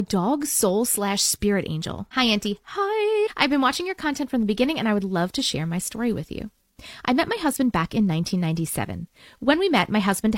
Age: 30-49